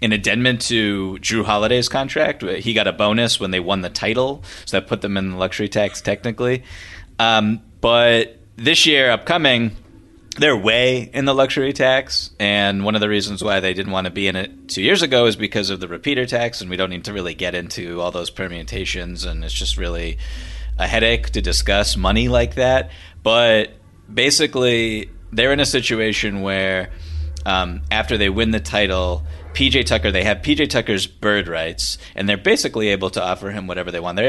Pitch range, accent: 90-110 Hz, American